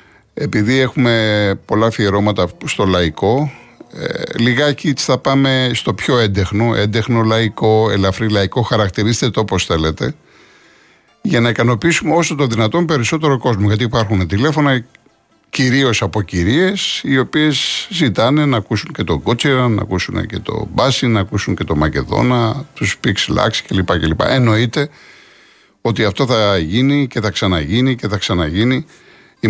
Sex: male